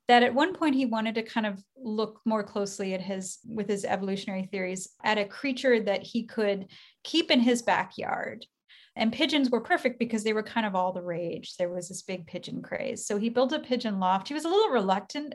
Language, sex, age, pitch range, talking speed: English, female, 30-49, 195-245 Hz, 225 wpm